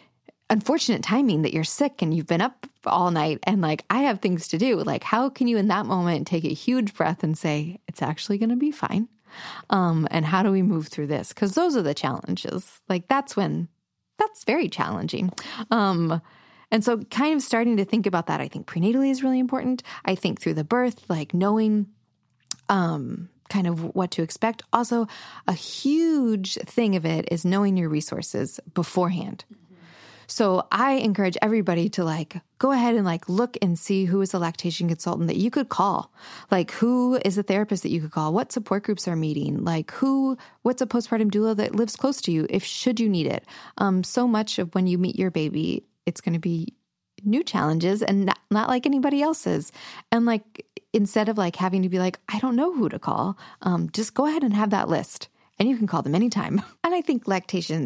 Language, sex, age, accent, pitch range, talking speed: English, female, 20-39, American, 175-235 Hz, 210 wpm